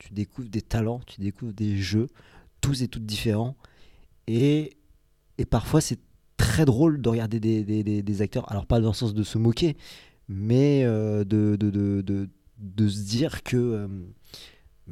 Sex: male